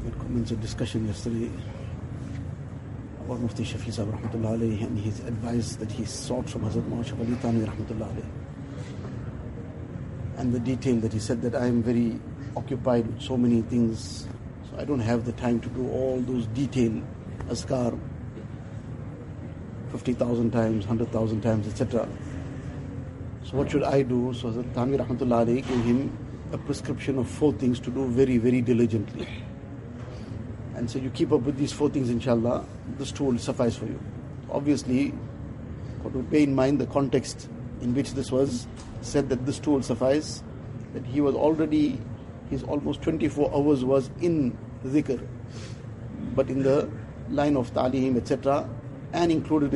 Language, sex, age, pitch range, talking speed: English, male, 50-69, 115-135 Hz, 150 wpm